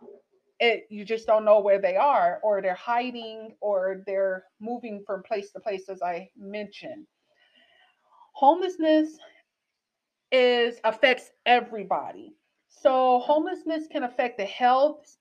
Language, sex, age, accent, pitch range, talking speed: English, female, 30-49, American, 220-270 Hz, 120 wpm